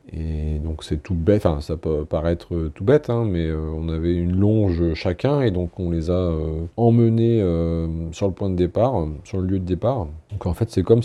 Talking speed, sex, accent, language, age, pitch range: 235 wpm, male, French, French, 40-59, 85-115 Hz